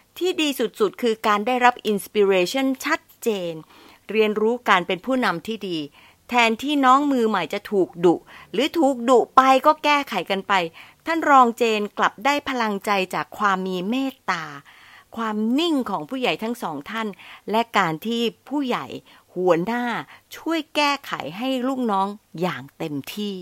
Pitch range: 180-255 Hz